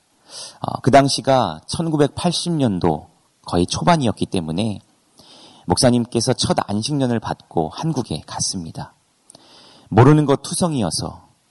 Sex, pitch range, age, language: male, 100-140 Hz, 40-59, Korean